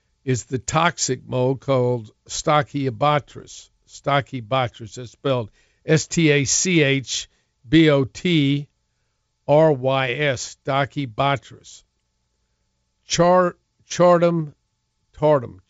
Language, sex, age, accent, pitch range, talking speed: English, male, 60-79, American, 120-150 Hz, 40 wpm